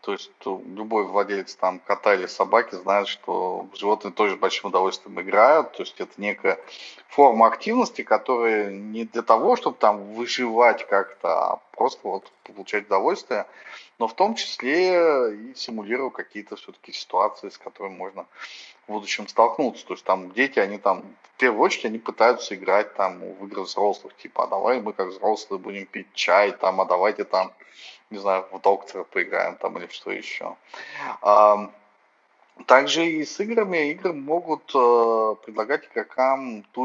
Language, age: Russian, 20-39